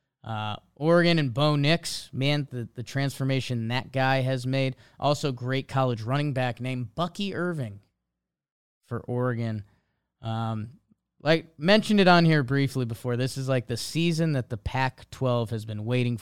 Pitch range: 120-155 Hz